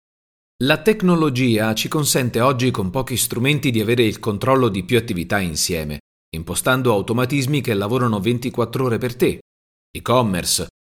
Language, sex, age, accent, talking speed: Italian, male, 40-59, native, 140 wpm